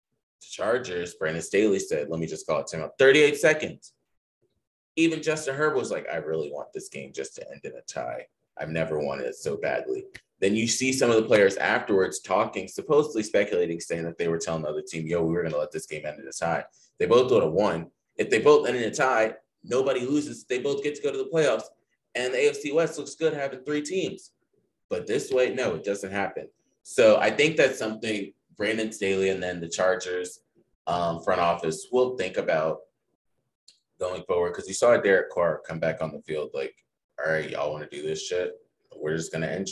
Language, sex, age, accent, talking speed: English, male, 30-49, American, 220 wpm